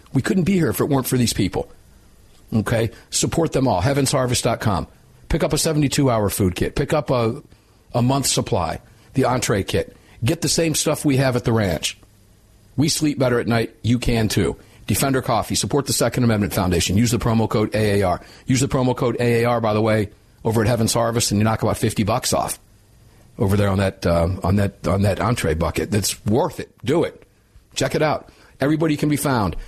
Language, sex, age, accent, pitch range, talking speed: English, male, 50-69, American, 100-130 Hz, 205 wpm